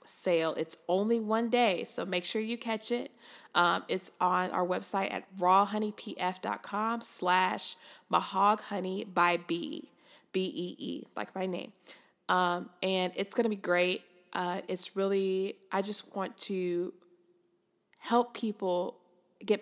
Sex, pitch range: female, 180-195 Hz